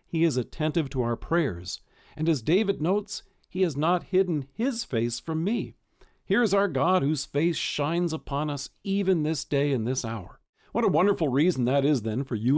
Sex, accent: male, American